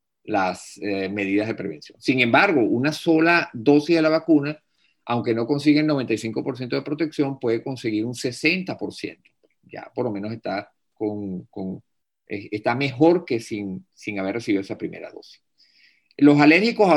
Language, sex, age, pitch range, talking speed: Spanish, male, 50-69, 105-150 Hz, 160 wpm